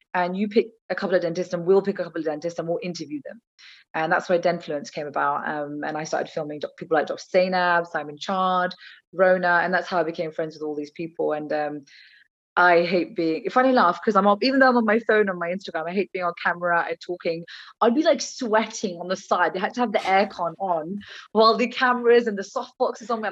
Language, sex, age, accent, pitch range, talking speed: English, female, 20-39, British, 165-205 Hz, 240 wpm